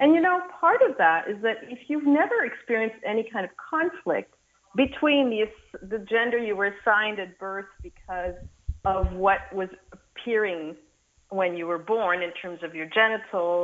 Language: English